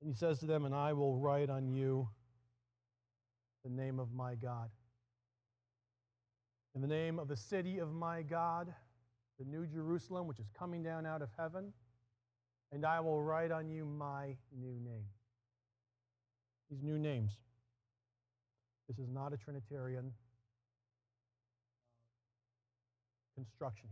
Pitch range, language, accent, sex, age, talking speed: 120-160 Hz, English, American, male, 40-59, 135 wpm